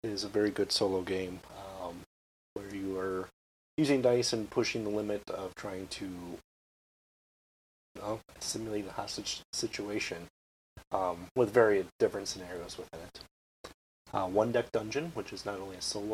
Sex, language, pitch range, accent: male, English, 90-110 Hz, American